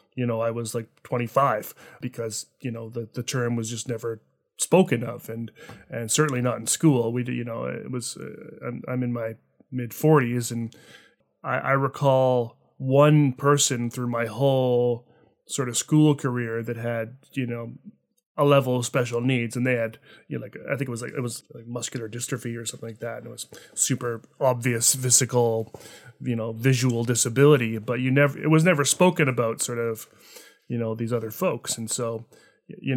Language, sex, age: English, male, 30-49